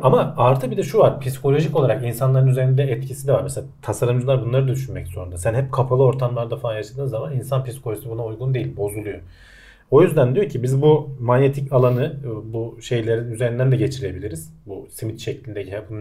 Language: Turkish